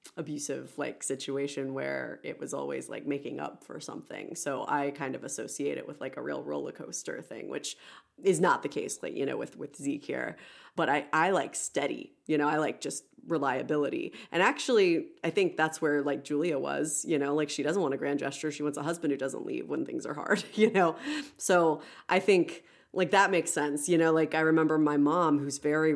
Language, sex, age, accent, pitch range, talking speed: English, female, 30-49, American, 145-180 Hz, 220 wpm